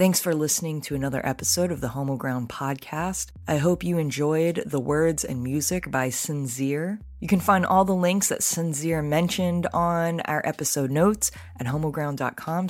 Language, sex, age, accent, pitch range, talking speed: English, female, 20-39, American, 140-175 Hz, 165 wpm